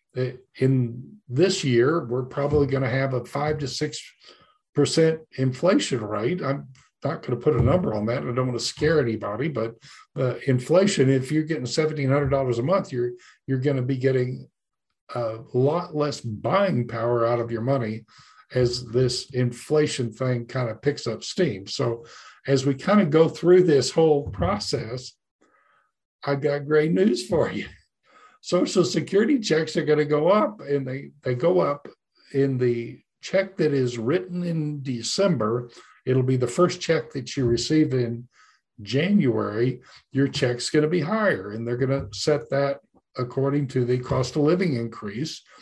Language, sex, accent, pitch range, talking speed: English, male, American, 125-155 Hz, 165 wpm